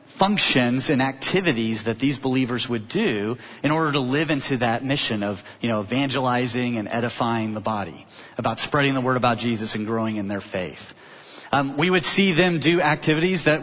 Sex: male